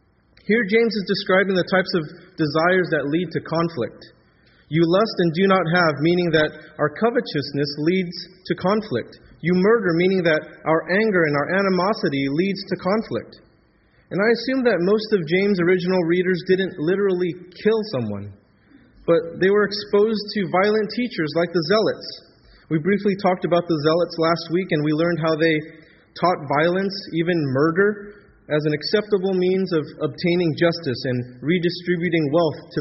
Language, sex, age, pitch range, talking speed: English, male, 30-49, 160-200 Hz, 160 wpm